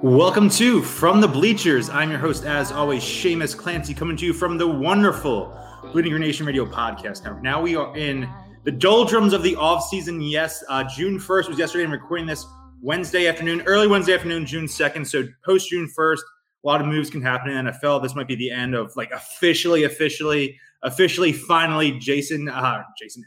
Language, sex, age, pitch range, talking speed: English, male, 20-39, 120-160 Hz, 190 wpm